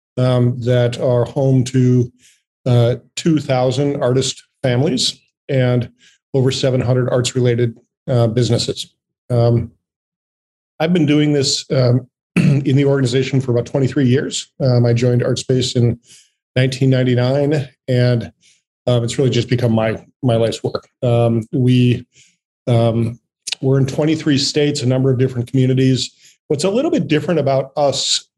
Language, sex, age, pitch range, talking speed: English, male, 40-59, 125-140 Hz, 135 wpm